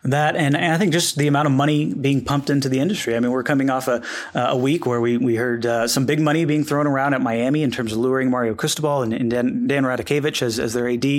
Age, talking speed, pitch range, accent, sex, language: 30-49, 275 wpm, 125-145 Hz, American, male, English